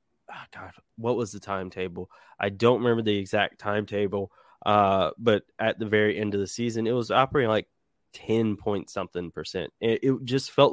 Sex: male